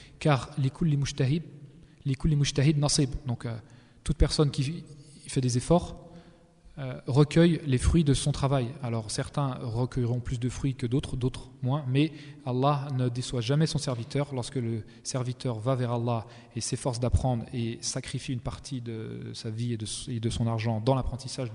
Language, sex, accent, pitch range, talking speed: French, male, French, 125-150 Hz, 170 wpm